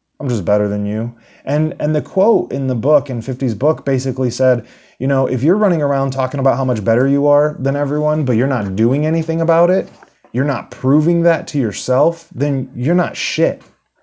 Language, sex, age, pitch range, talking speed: English, male, 20-39, 115-145 Hz, 210 wpm